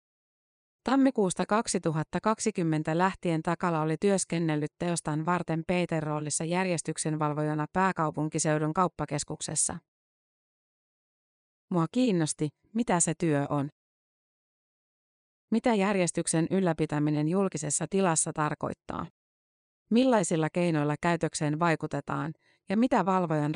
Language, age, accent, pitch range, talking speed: Finnish, 30-49, native, 155-190 Hz, 80 wpm